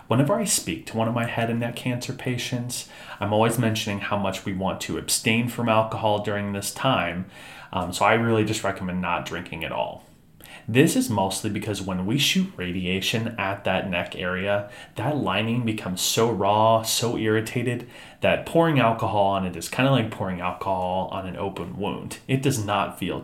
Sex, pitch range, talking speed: male, 95-125 Hz, 190 wpm